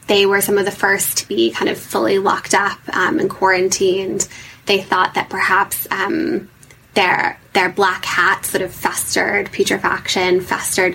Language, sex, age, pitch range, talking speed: English, female, 10-29, 190-225 Hz, 165 wpm